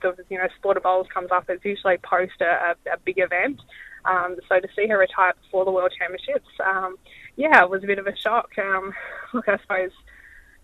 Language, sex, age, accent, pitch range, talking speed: English, female, 10-29, Australian, 185-210 Hz, 220 wpm